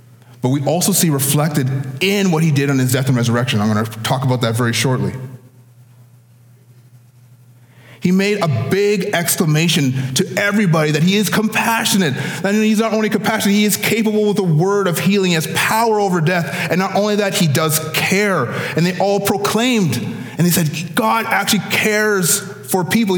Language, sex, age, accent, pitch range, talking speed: English, male, 30-49, American, 130-200 Hz, 180 wpm